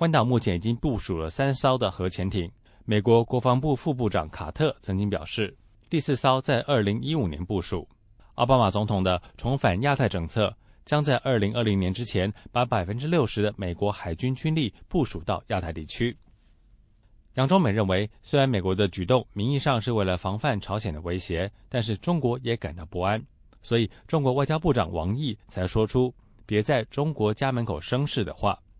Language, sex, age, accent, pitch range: English, male, 20-39, Chinese, 95-125 Hz